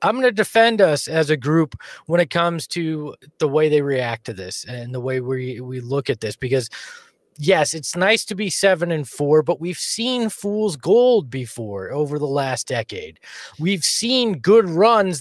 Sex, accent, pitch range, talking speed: male, American, 155-200 Hz, 195 wpm